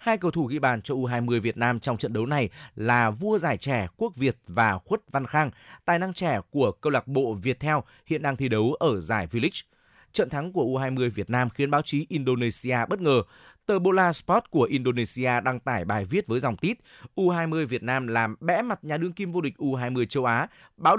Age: 20-39